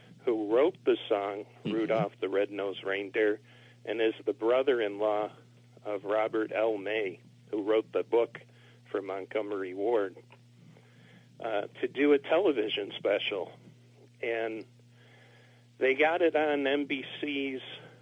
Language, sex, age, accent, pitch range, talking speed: English, male, 50-69, American, 105-130 Hz, 115 wpm